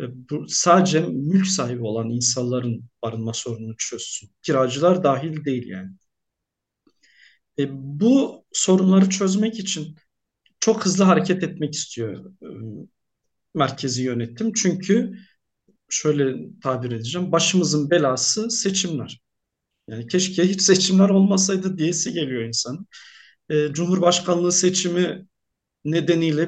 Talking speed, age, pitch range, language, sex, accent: 100 wpm, 50-69, 130-185 Hz, Turkish, male, native